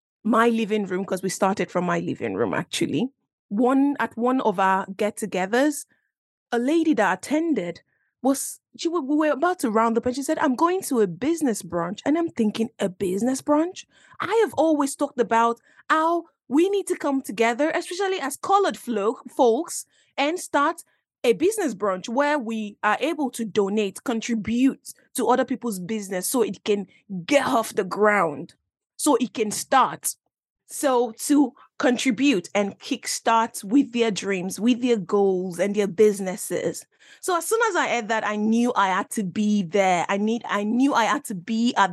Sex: female